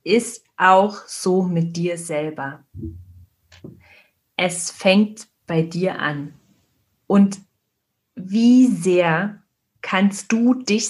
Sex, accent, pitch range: female, German, 165-210 Hz